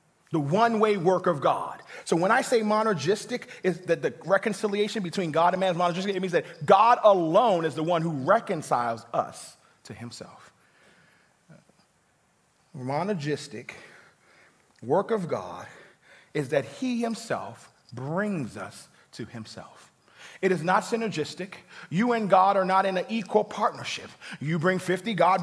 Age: 30-49